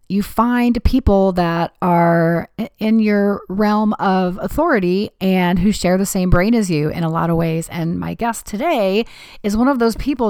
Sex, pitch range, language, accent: female, 170-215 Hz, English, American